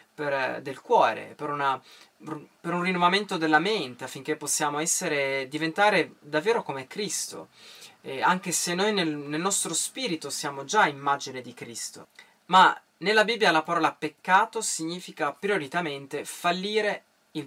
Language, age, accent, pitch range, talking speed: Italian, 20-39, native, 150-190 Hz, 135 wpm